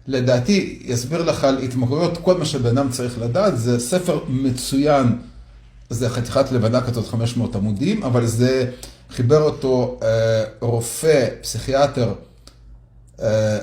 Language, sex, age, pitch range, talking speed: Hebrew, male, 40-59, 110-145 Hz, 120 wpm